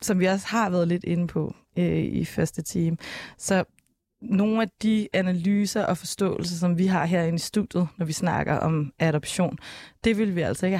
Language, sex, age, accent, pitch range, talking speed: Danish, female, 20-39, native, 160-190 Hz, 190 wpm